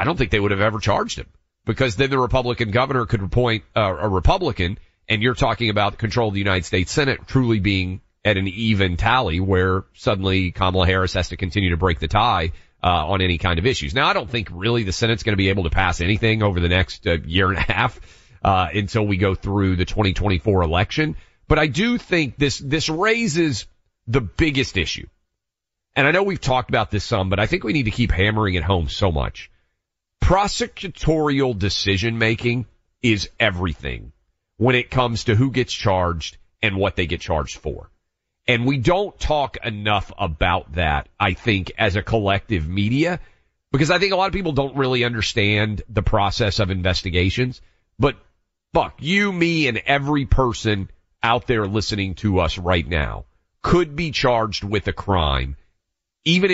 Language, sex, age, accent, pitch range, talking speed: English, male, 30-49, American, 95-125 Hz, 185 wpm